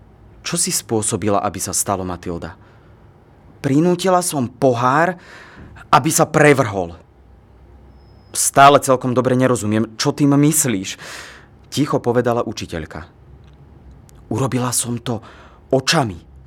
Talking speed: 100 wpm